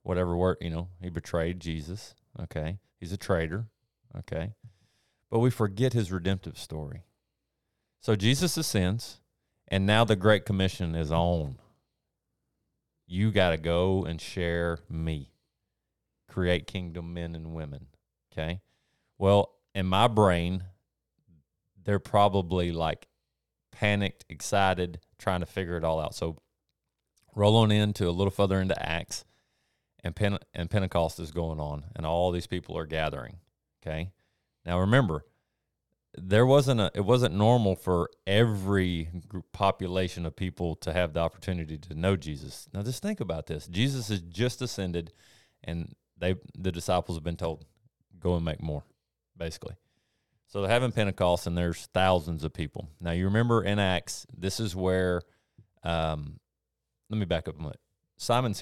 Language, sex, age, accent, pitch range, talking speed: English, male, 30-49, American, 85-105 Hz, 150 wpm